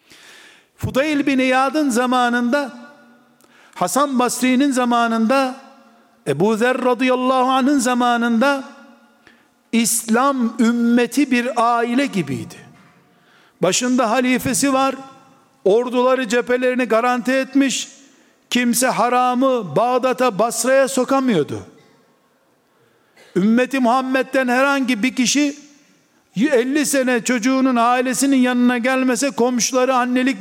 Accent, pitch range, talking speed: native, 240-270 Hz, 80 wpm